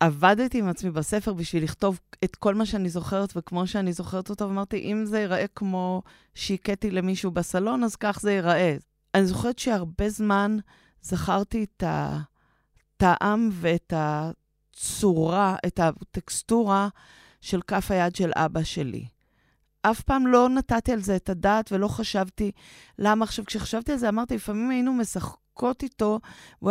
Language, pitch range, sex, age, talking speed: Hebrew, 170-215 Hz, female, 30-49, 145 wpm